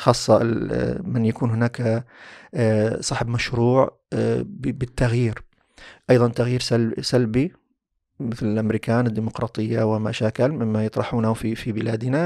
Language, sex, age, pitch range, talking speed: Arabic, male, 40-59, 120-165 Hz, 90 wpm